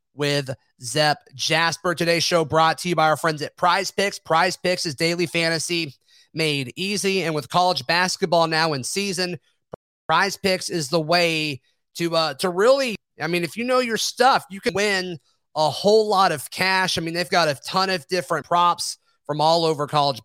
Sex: male